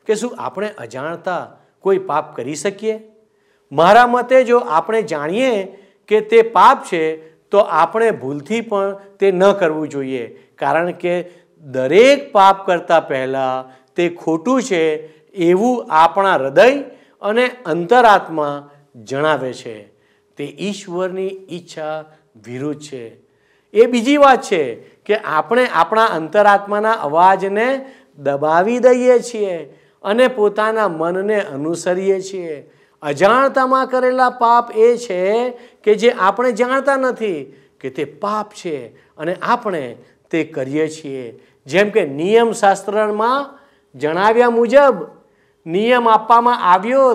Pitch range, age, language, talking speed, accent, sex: 155-230 Hz, 50-69, Gujarati, 100 wpm, native, male